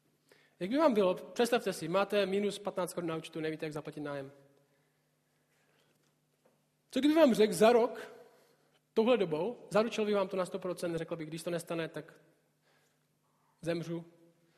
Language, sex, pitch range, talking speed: Czech, male, 160-205 Hz, 150 wpm